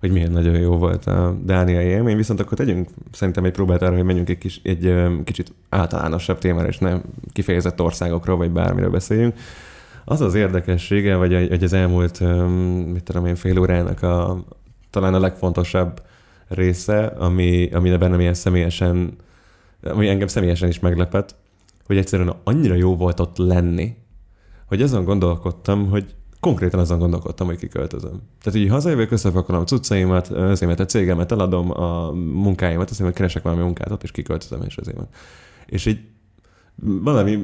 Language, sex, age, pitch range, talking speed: Hungarian, male, 20-39, 90-100 Hz, 165 wpm